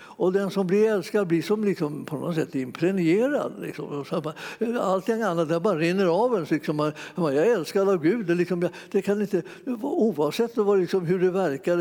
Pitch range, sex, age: 160-200 Hz, male, 60-79